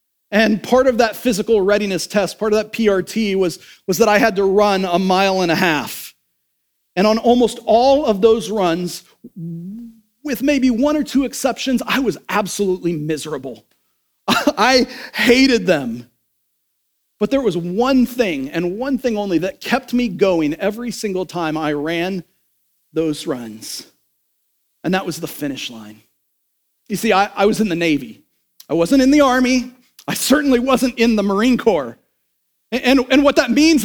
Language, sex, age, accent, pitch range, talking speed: English, male, 40-59, American, 185-280 Hz, 165 wpm